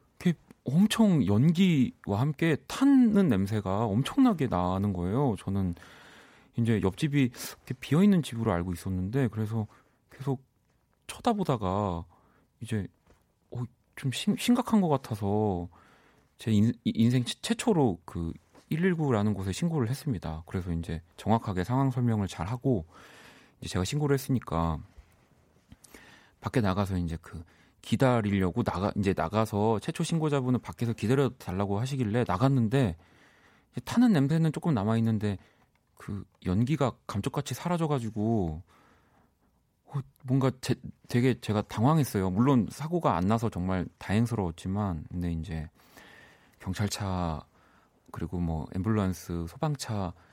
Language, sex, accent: Korean, male, native